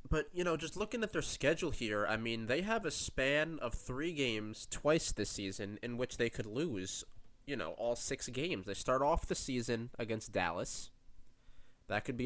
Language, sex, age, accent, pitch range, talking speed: English, male, 20-39, American, 100-125 Hz, 200 wpm